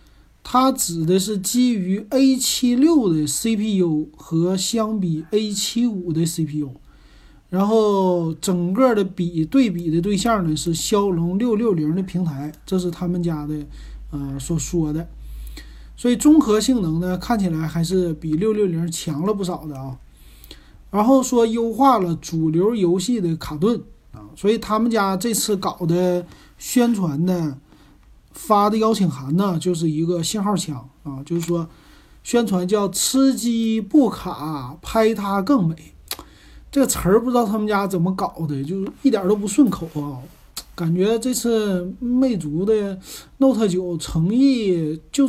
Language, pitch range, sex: Chinese, 160-220 Hz, male